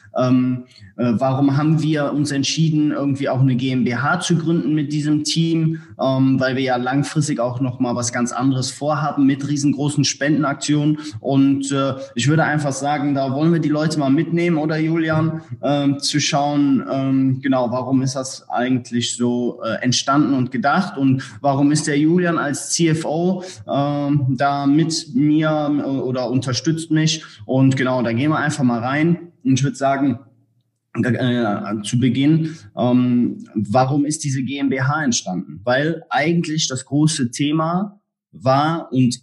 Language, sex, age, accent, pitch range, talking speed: German, male, 20-39, German, 125-150 Hz, 155 wpm